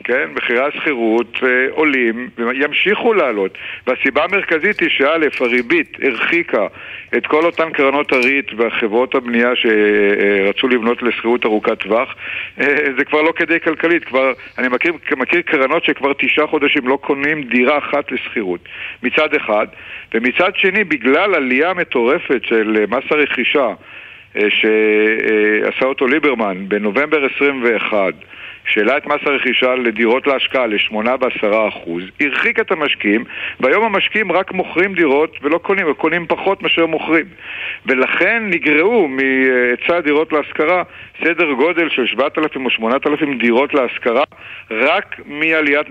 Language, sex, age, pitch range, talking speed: Hebrew, male, 60-79, 120-160 Hz, 130 wpm